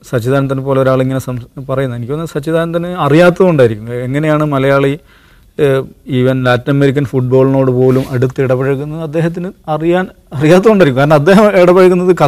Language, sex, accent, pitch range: English, male, Indian, 135-175 Hz